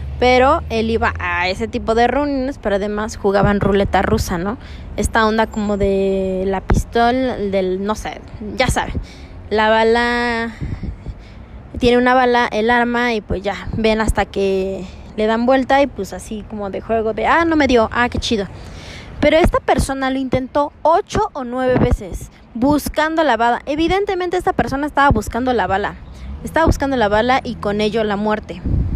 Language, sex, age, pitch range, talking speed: Spanish, female, 20-39, 210-270 Hz, 170 wpm